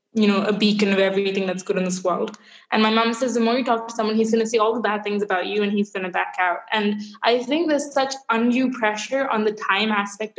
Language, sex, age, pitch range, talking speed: English, female, 10-29, 195-225 Hz, 275 wpm